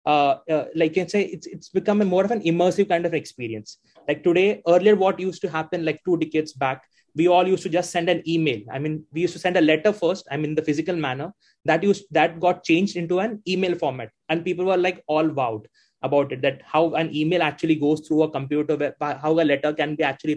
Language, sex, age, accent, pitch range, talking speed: English, male, 20-39, Indian, 155-185 Hz, 240 wpm